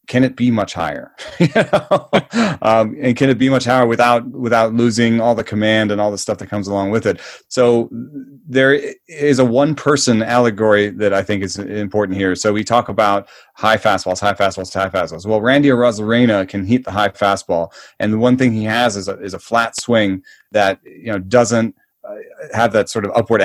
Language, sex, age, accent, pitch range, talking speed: English, male, 30-49, American, 100-125 Hz, 205 wpm